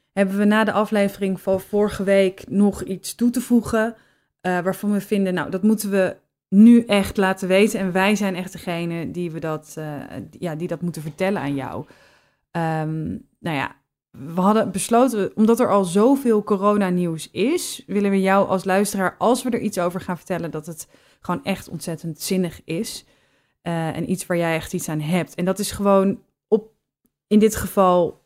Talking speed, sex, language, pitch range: 175 wpm, female, Dutch, 170-205 Hz